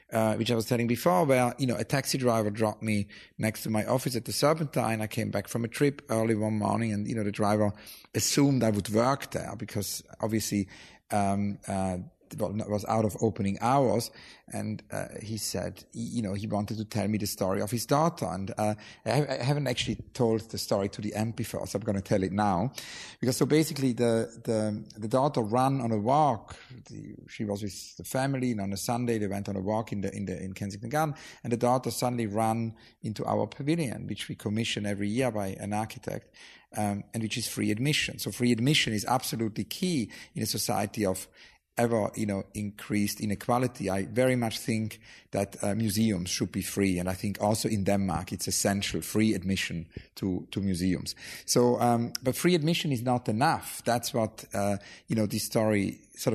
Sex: male